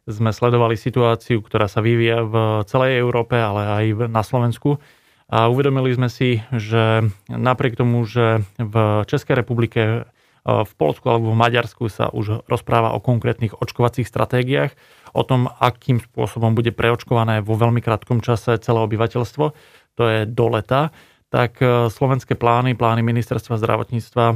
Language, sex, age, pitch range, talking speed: Slovak, male, 30-49, 110-125 Hz, 145 wpm